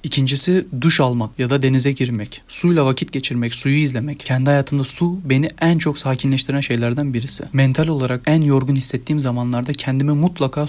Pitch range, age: 125-145 Hz, 30-49